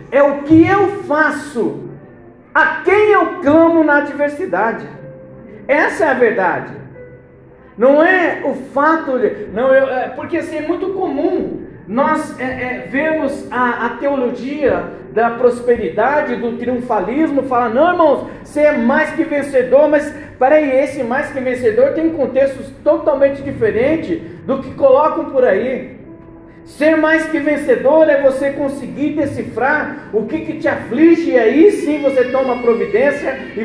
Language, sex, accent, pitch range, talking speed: Portuguese, male, Brazilian, 250-315 Hz, 145 wpm